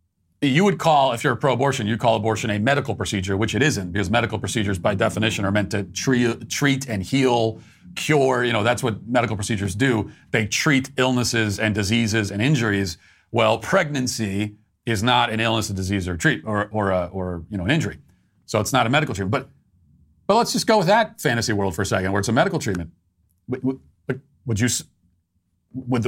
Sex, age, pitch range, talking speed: male, 40-59, 100-155 Hz, 205 wpm